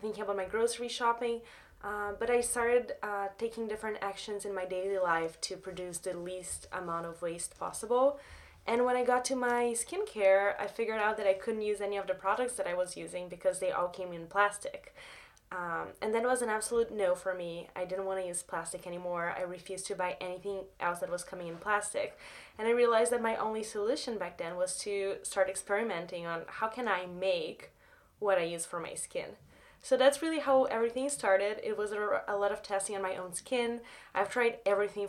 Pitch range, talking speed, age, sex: 180-230 Hz, 210 wpm, 20-39, female